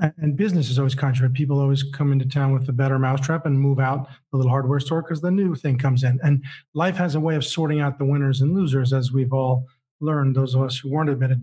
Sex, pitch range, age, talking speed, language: male, 140-165 Hz, 40-59, 255 wpm, English